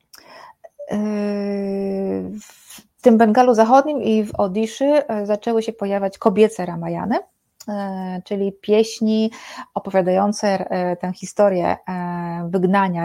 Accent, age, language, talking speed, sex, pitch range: native, 30-49, Polish, 85 wpm, female, 175-205 Hz